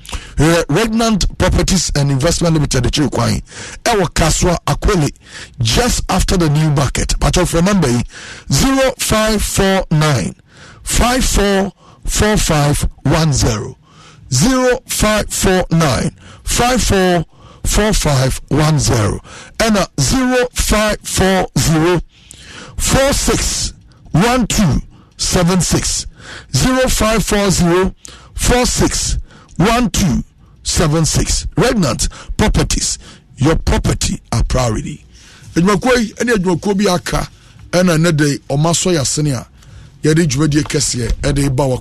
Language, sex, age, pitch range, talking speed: English, male, 60-79, 130-190 Hz, 75 wpm